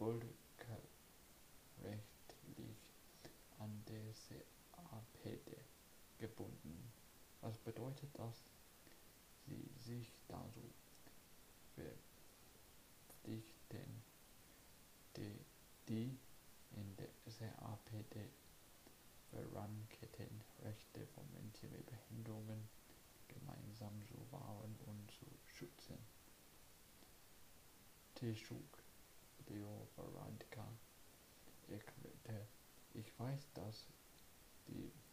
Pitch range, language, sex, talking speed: 105-120 Hz, English, male, 55 wpm